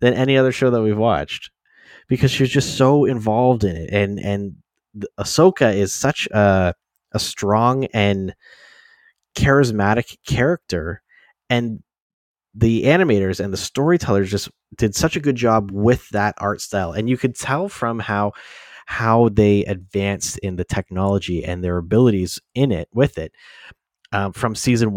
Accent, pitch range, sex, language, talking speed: American, 95-120 Hz, male, English, 150 wpm